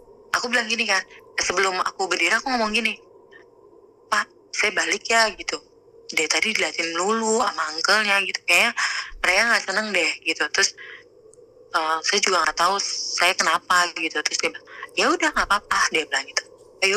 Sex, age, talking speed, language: female, 20-39, 165 wpm, Indonesian